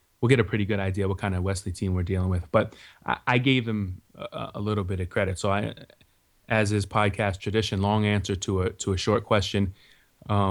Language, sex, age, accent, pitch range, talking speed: English, male, 30-49, American, 95-115 Hz, 225 wpm